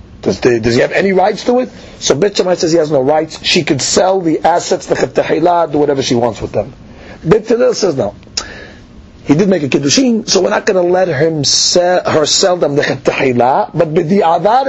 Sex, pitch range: male, 170-245 Hz